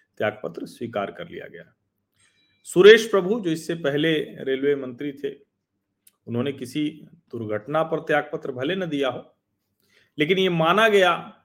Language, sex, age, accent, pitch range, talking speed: Hindi, male, 40-59, native, 105-145 Hz, 130 wpm